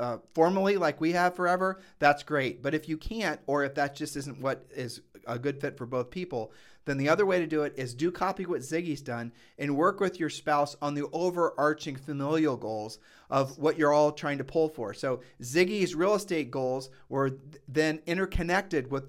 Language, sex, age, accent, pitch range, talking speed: English, male, 40-59, American, 135-165 Hz, 205 wpm